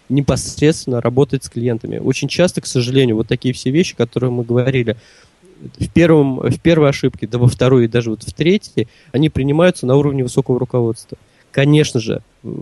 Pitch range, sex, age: 120-150 Hz, male, 20-39